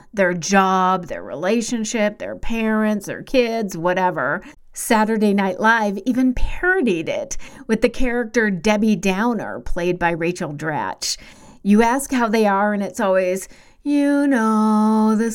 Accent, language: American, English